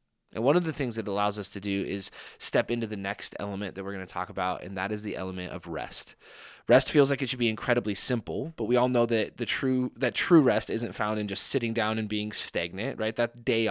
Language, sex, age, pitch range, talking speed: English, male, 20-39, 110-140 Hz, 260 wpm